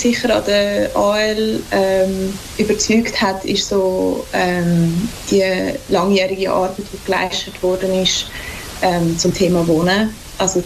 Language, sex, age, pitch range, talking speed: English, female, 20-39, 175-195 Hz, 130 wpm